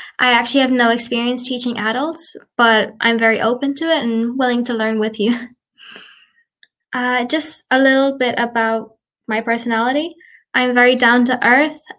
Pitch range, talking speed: 225-255 Hz, 160 wpm